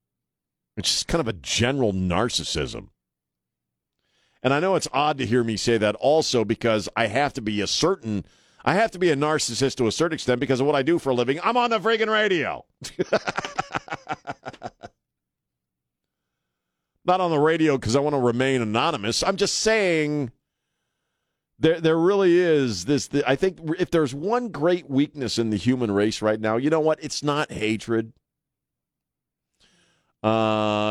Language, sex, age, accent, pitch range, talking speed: English, male, 50-69, American, 95-145 Hz, 165 wpm